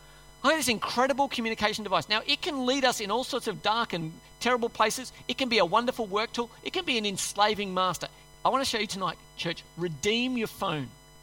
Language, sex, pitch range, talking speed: English, male, 160-245 Hz, 225 wpm